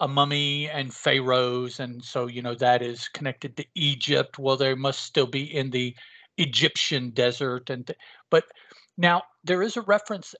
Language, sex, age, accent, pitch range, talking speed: English, male, 50-69, American, 135-185 Hz, 175 wpm